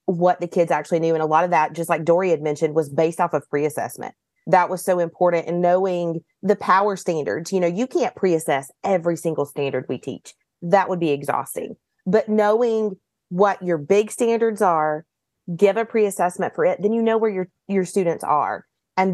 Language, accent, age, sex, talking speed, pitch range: English, American, 30-49, female, 200 wpm, 165-190 Hz